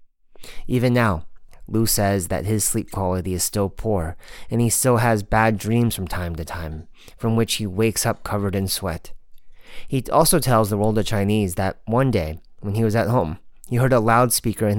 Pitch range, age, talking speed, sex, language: 95-115 Hz, 30-49, 200 wpm, male, English